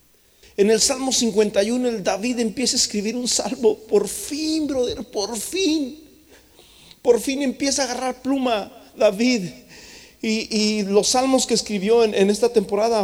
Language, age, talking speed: Spanish, 40-59, 150 wpm